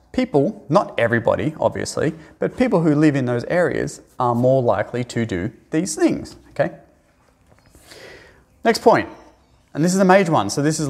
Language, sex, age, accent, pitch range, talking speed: English, male, 30-49, Australian, 115-160 Hz, 165 wpm